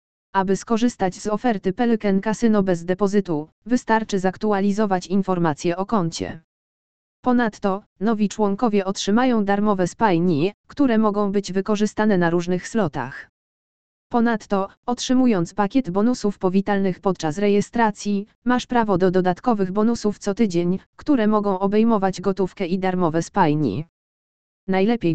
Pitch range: 185-220 Hz